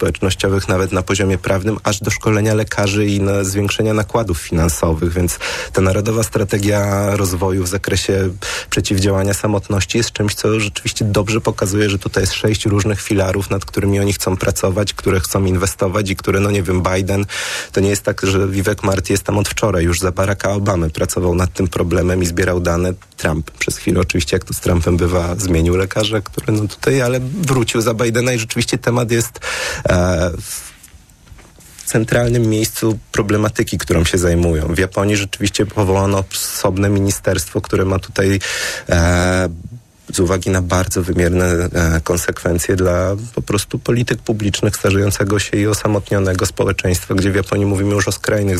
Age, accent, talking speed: 30-49, native, 165 wpm